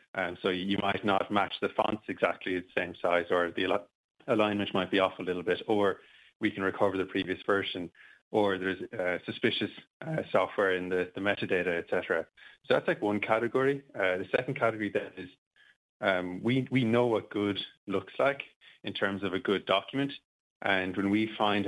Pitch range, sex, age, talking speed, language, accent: 95-110 Hz, male, 20-39, 190 wpm, English, Irish